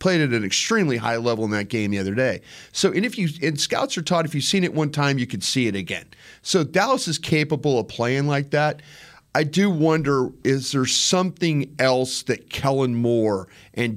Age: 40-59